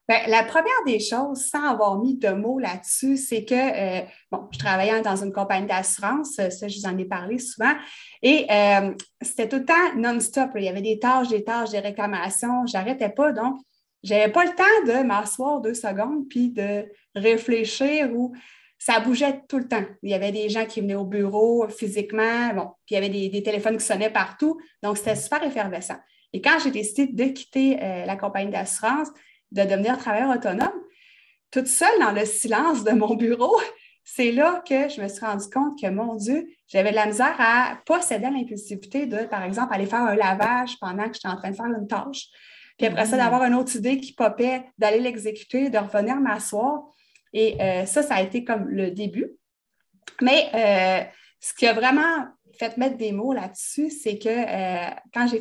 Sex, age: female, 30-49